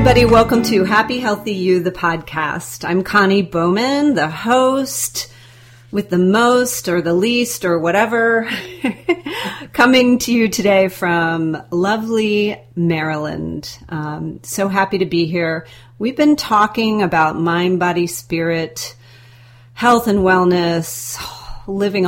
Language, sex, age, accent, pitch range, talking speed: English, female, 40-59, American, 160-210 Hz, 120 wpm